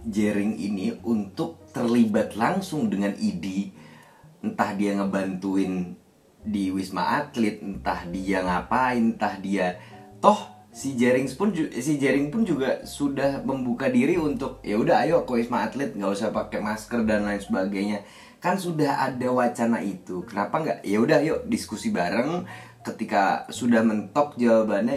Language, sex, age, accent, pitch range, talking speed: Indonesian, male, 20-39, native, 100-120 Hz, 145 wpm